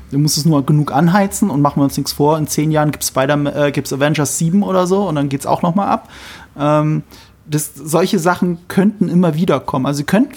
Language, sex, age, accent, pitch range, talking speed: German, male, 30-49, German, 145-195 Hz, 245 wpm